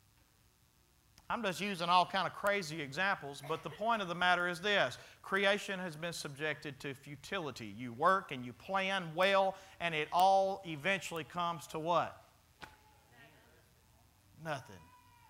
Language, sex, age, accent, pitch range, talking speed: English, male, 40-59, American, 180-265 Hz, 140 wpm